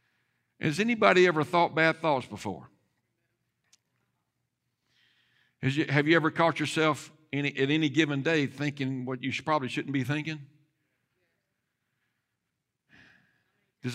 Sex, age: male, 60-79